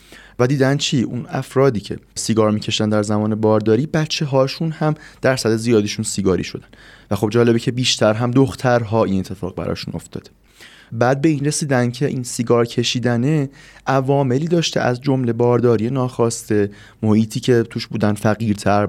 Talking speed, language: 160 wpm, Persian